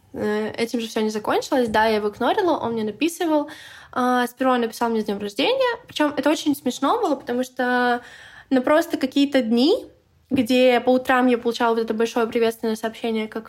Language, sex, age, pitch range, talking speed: Russian, female, 20-39, 220-260 Hz, 185 wpm